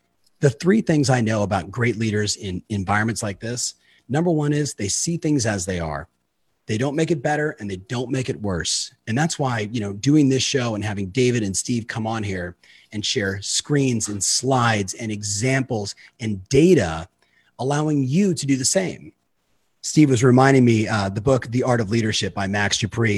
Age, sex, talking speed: 30-49, male, 200 wpm